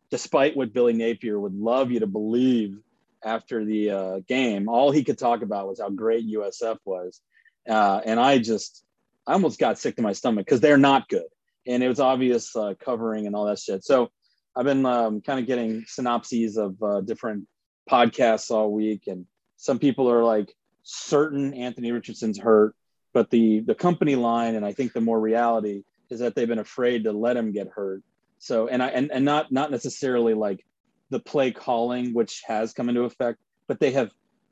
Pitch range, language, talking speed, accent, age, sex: 105-130 Hz, English, 195 wpm, American, 30-49, male